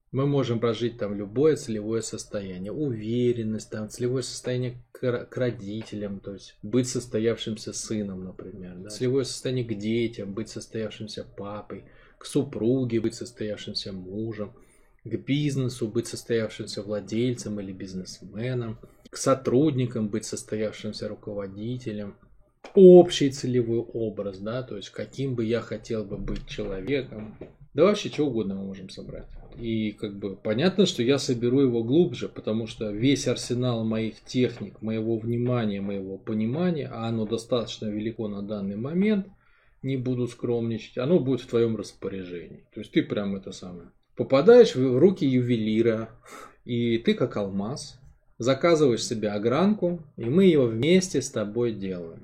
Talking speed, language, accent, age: 140 wpm, Russian, native, 20-39